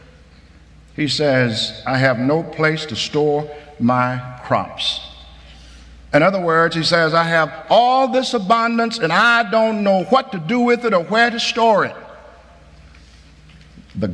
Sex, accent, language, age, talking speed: male, American, English, 50-69, 150 wpm